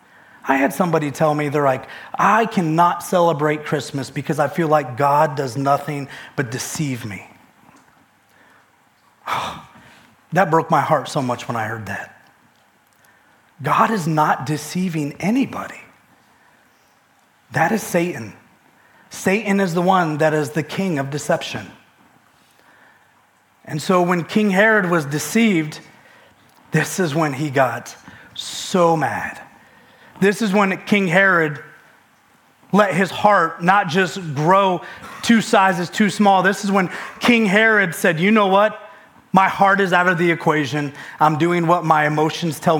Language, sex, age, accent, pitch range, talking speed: English, male, 30-49, American, 150-190 Hz, 140 wpm